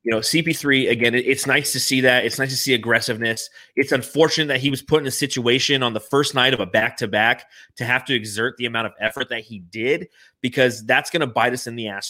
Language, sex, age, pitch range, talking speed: English, male, 30-49, 115-150 Hz, 255 wpm